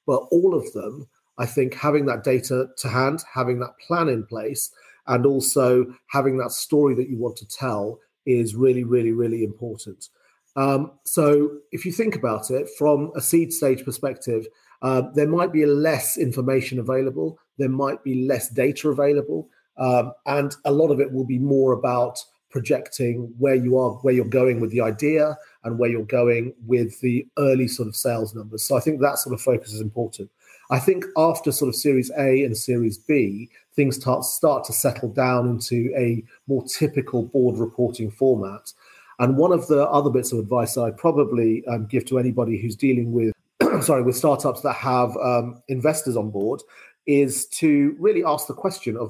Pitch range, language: 120-145 Hz, English